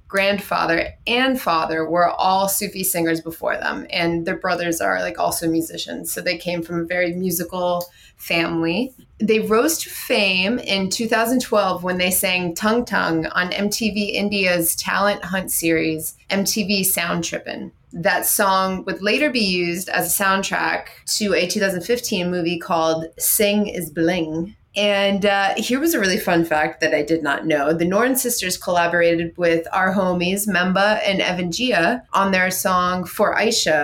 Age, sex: 20-39, female